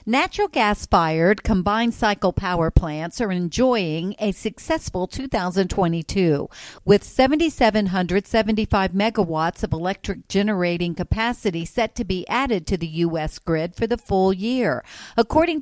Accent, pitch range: American, 180-225 Hz